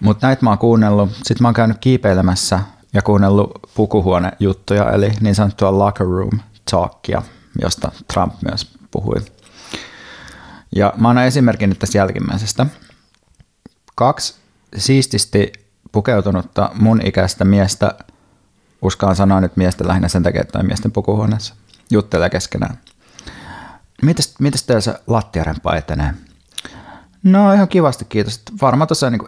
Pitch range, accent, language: 95-120 Hz, native, Finnish